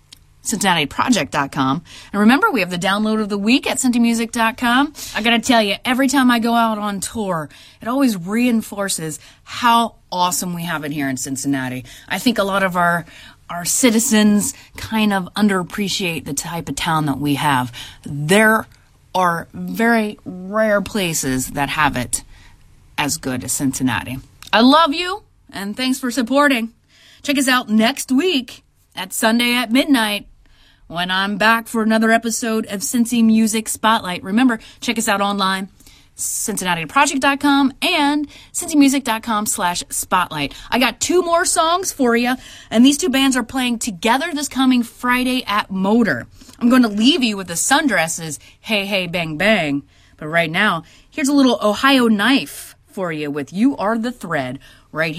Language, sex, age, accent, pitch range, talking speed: English, female, 30-49, American, 165-245 Hz, 160 wpm